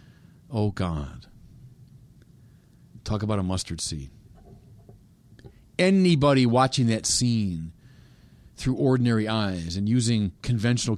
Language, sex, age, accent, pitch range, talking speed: English, male, 50-69, American, 105-135 Hz, 95 wpm